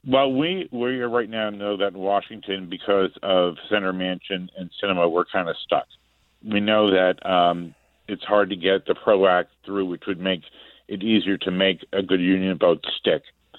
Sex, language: male, English